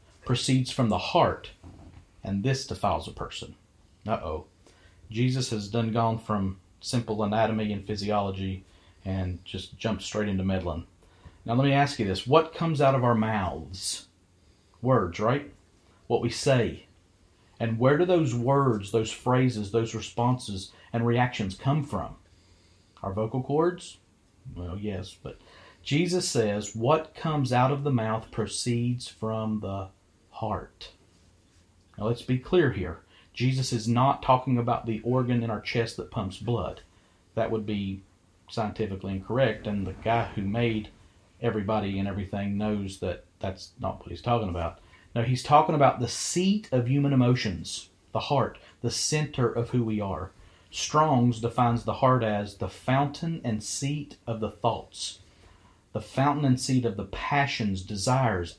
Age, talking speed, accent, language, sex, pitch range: 40-59, 155 wpm, American, English, male, 95-125 Hz